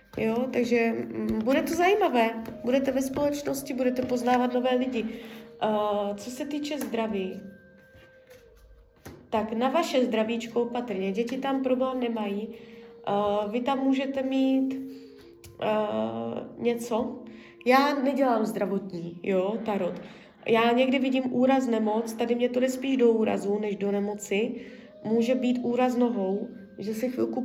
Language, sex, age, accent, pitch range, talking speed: Czech, female, 20-39, native, 205-240 Hz, 130 wpm